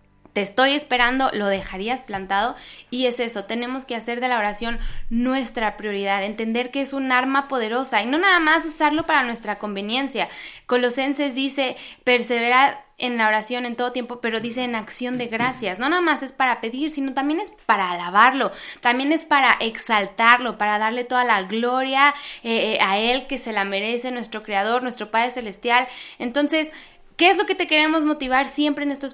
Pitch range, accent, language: 230-285 Hz, Mexican, Spanish